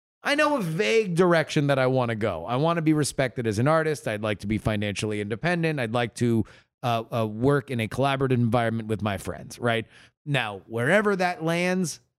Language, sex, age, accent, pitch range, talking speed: English, male, 30-49, American, 115-150 Hz, 205 wpm